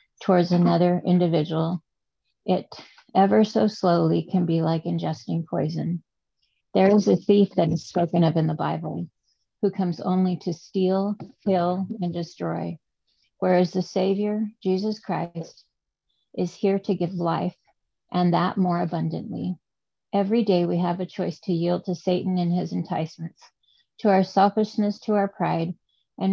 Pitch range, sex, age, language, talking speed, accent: 165-195 Hz, female, 40-59, English, 150 wpm, American